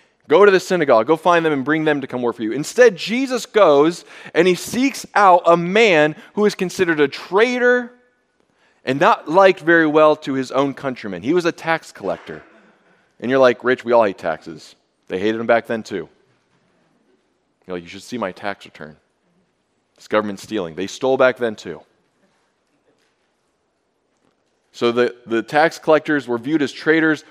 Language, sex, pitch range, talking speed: English, male, 120-180 Hz, 180 wpm